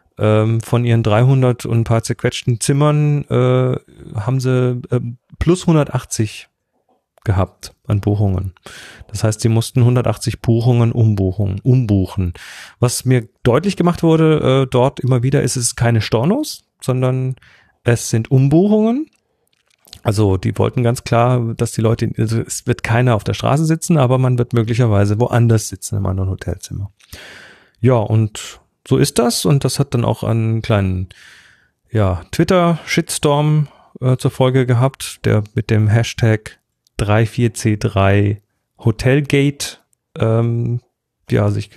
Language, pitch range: German, 110-130 Hz